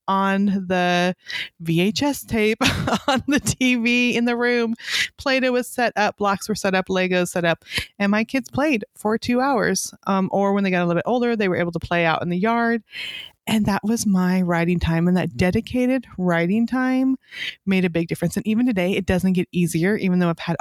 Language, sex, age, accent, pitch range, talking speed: English, female, 30-49, American, 175-230 Hz, 210 wpm